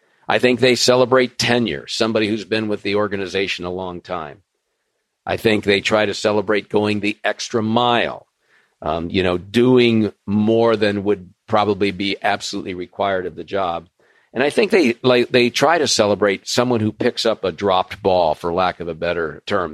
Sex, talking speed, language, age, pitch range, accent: male, 180 wpm, English, 50-69, 100-120 Hz, American